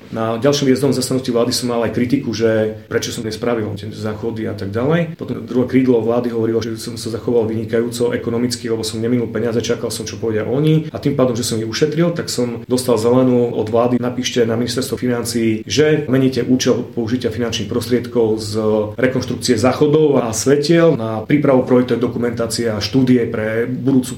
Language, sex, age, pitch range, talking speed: Slovak, male, 30-49, 110-125 Hz, 180 wpm